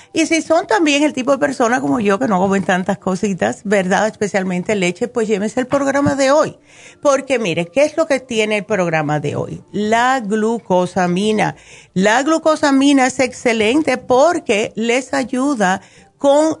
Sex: female